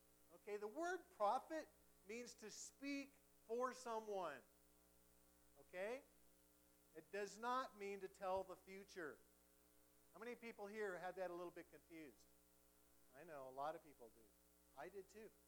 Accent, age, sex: American, 50-69, male